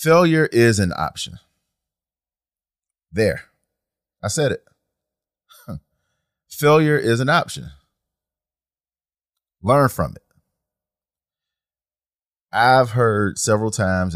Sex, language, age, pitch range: male, English, 30-49, 85-110 Hz